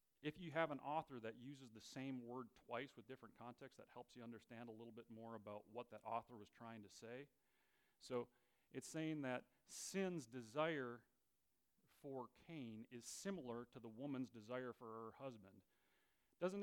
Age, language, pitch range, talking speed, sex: 40-59, English, 115-140 Hz, 175 wpm, male